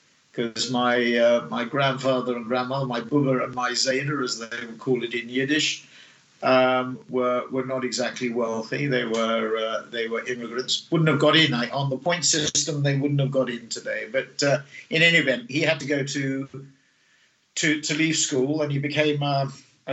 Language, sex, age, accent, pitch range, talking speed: English, male, 50-69, British, 125-145 Hz, 195 wpm